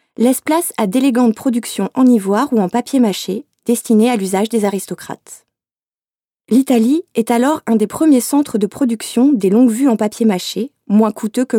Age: 20-39